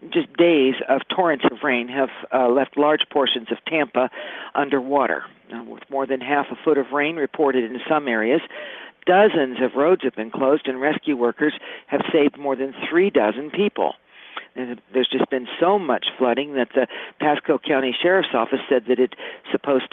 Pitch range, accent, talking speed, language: 120-150 Hz, American, 175 wpm, English